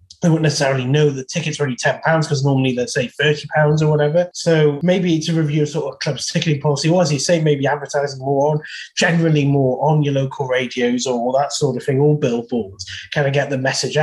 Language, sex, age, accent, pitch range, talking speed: English, male, 20-39, British, 135-165 Hz, 225 wpm